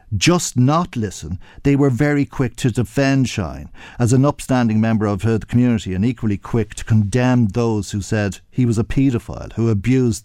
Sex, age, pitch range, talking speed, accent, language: male, 50-69, 105-135 Hz, 180 wpm, Irish, English